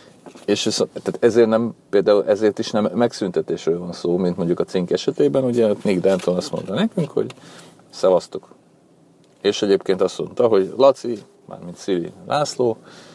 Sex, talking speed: male, 150 wpm